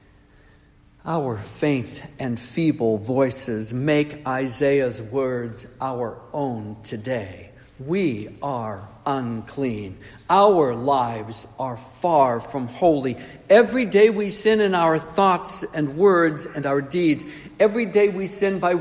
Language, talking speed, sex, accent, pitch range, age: English, 120 wpm, male, American, 130-200 Hz, 60-79